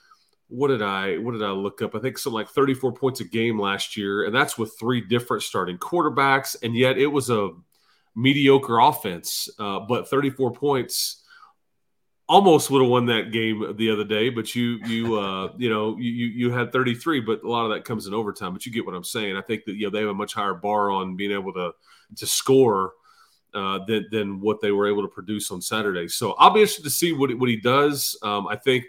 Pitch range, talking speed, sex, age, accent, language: 110-135 Hz, 235 wpm, male, 30-49, American, English